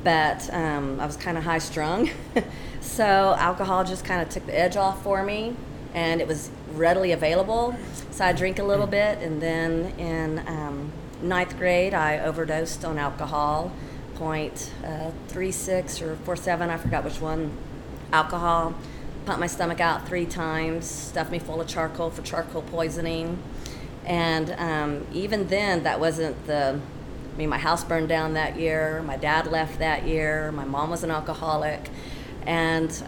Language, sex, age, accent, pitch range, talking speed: English, female, 40-59, American, 155-175 Hz, 165 wpm